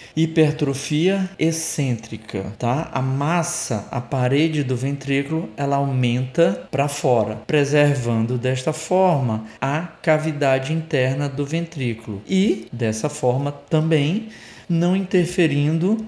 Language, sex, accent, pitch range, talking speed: Portuguese, male, Brazilian, 130-165 Hz, 100 wpm